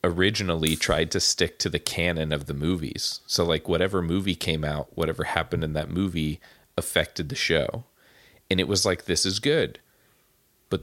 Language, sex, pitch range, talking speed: English, male, 85-115 Hz, 175 wpm